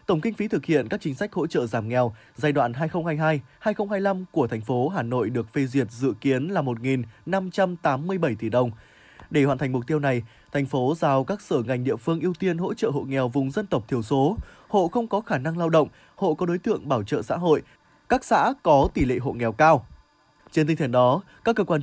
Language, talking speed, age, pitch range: Vietnamese, 230 wpm, 20-39, 130-175 Hz